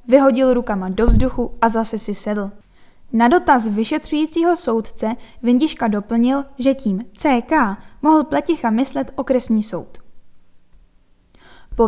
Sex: female